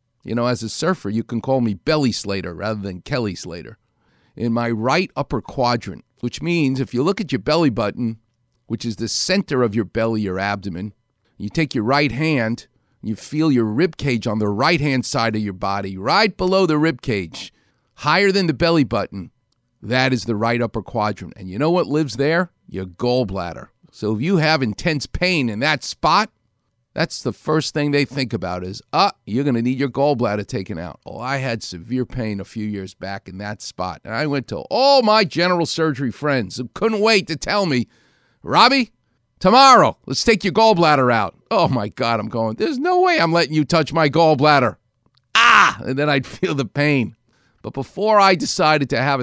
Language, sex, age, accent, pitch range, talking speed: English, male, 50-69, American, 110-150 Hz, 200 wpm